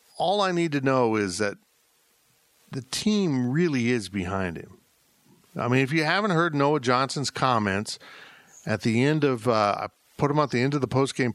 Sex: male